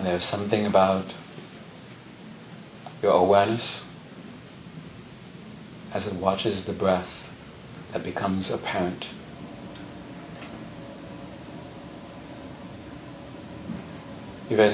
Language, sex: English, male